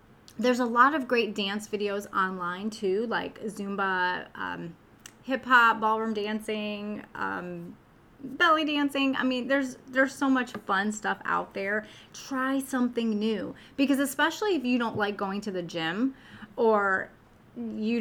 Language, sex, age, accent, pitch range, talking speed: English, female, 30-49, American, 200-260 Hz, 145 wpm